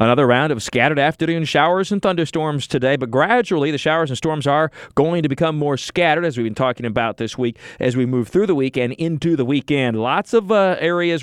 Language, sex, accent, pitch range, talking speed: English, male, American, 125-160 Hz, 225 wpm